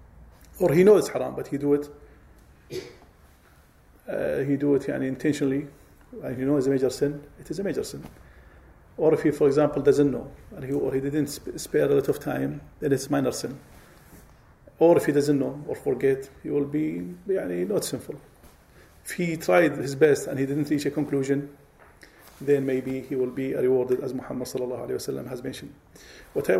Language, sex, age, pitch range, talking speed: English, male, 40-59, 130-150 Hz, 200 wpm